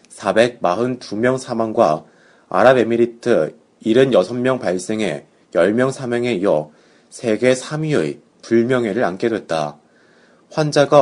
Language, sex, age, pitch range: Korean, male, 30-49, 110-130 Hz